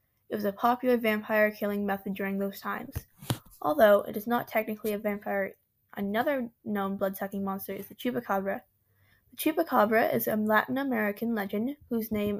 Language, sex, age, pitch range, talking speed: English, female, 10-29, 205-240 Hz, 165 wpm